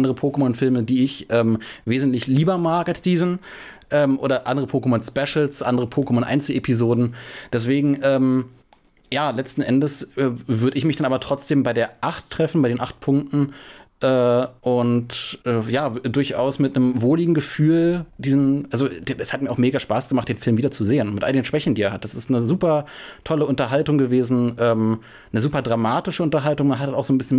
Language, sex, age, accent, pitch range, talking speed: German, male, 30-49, German, 115-140 Hz, 185 wpm